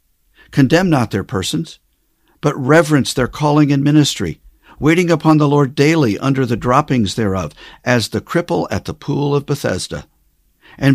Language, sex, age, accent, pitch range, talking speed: English, male, 50-69, American, 105-150 Hz, 155 wpm